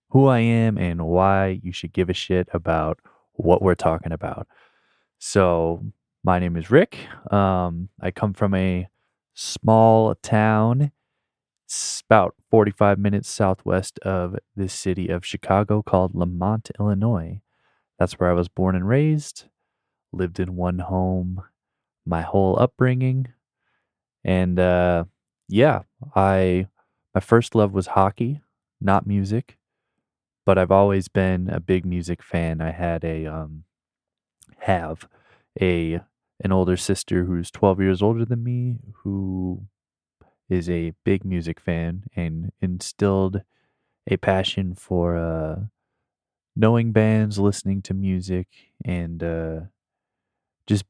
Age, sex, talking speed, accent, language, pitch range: 20-39, male, 125 wpm, American, English, 90-105 Hz